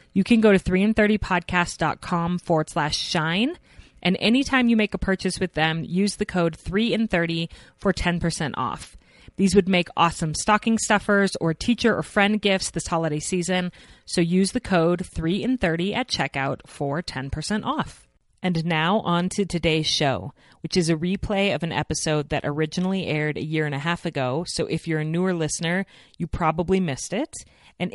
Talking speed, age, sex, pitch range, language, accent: 185 wpm, 30-49, female, 150-185 Hz, English, American